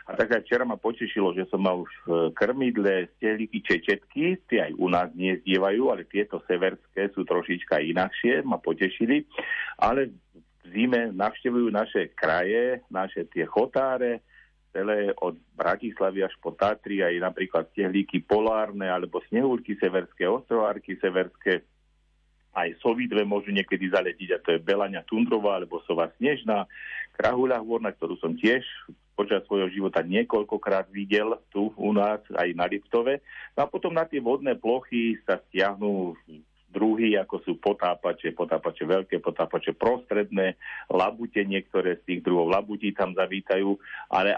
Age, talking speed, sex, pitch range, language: 50-69, 140 wpm, male, 95-115 Hz, Slovak